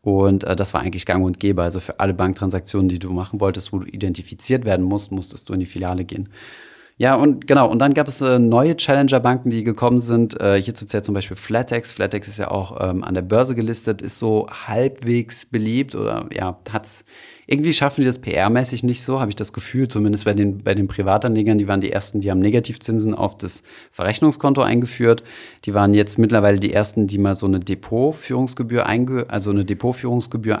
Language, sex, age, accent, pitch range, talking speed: German, male, 30-49, German, 100-120 Hz, 205 wpm